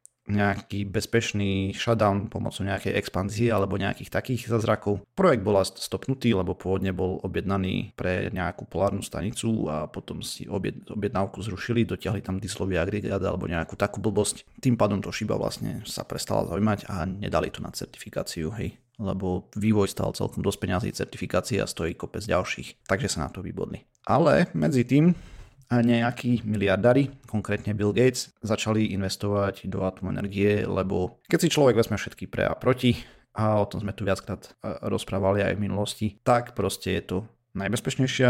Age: 30-49